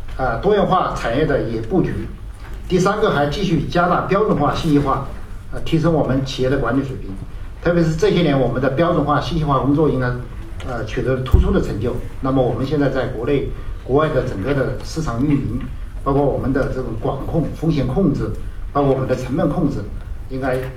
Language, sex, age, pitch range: Chinese, male, 50-69, 120-155 Hz